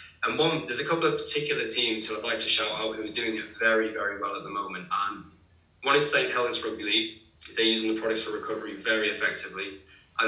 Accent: British